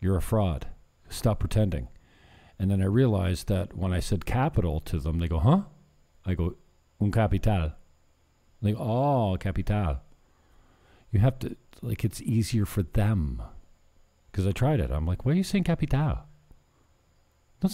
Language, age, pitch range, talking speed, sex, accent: English, 50-69, 75-115 Hz, 160 wpm, male, American